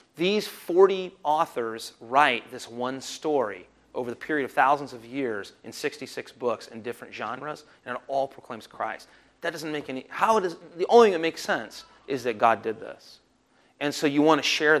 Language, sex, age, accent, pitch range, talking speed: English, male, 30-49, American, 155-220 Hz, 195 wpm